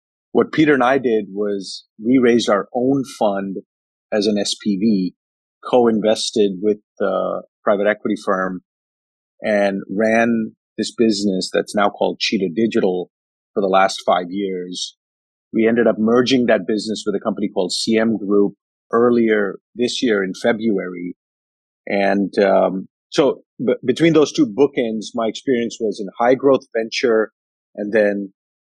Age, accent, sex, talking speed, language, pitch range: 30-49, American, male, 145 wpm, English, 95-115 Hz